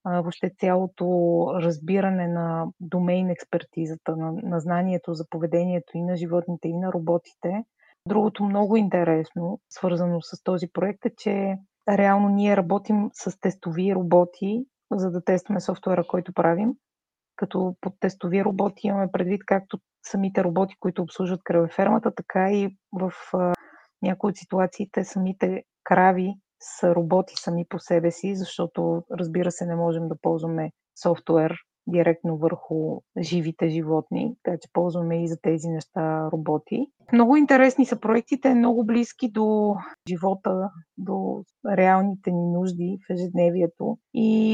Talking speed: 135 wpm